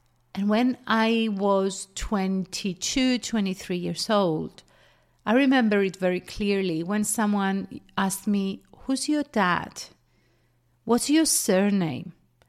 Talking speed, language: 110 wpm, English